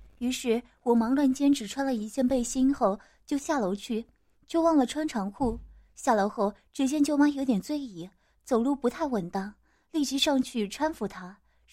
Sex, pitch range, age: female, 220-285 Hz, 20-39